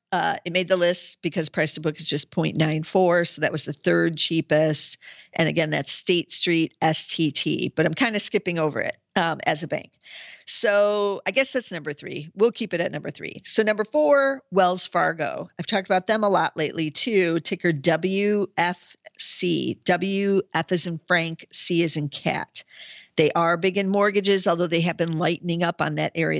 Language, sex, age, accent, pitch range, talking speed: English, female, 50-69, American, 155-190 Hz, 190 wpm